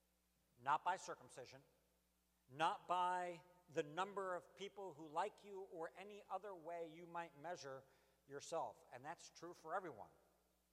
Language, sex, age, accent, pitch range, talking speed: English, male, 60-79, American, 125-195 Hz, 140 wpm